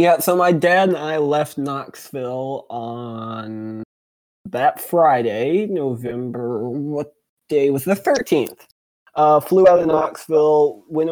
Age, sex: 20-39, male